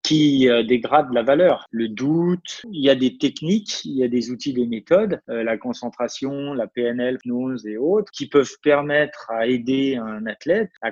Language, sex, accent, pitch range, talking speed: French, male, French, 120-150 Hz, 180 wpm